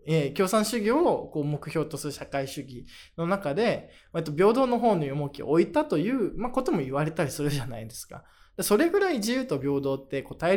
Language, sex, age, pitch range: Japanese, male, 20-39, 140-200 Hz